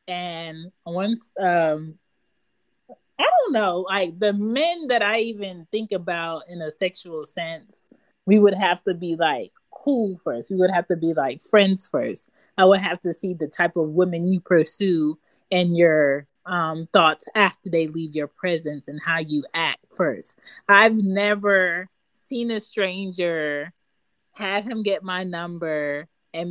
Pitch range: 160-200 Hz